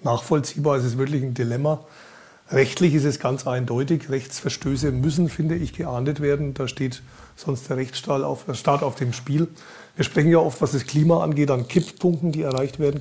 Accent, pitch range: German, 125-150 Hz